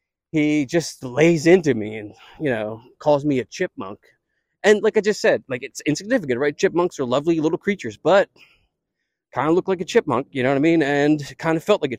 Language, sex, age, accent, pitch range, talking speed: English, male, 20-39, American, 135-180 Hz, 220 wpm